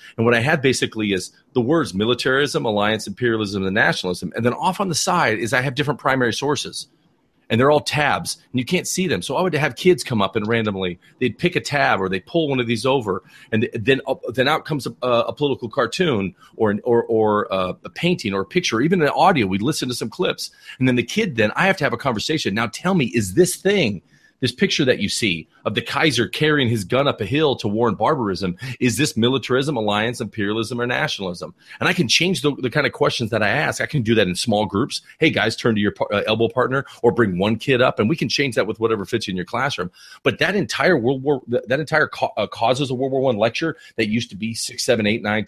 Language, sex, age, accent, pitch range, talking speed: English, male, 40-59, American, 110-150 Hz, 245 wpm